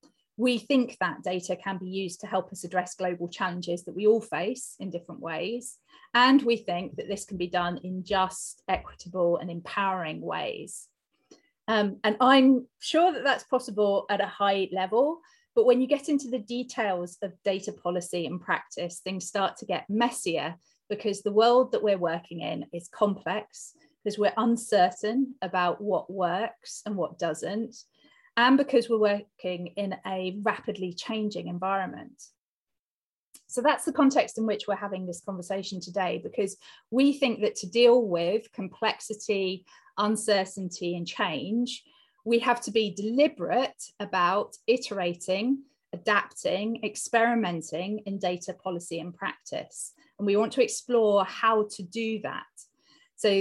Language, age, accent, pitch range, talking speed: English, 30-49, British, 185-235 Hz, 150 wpm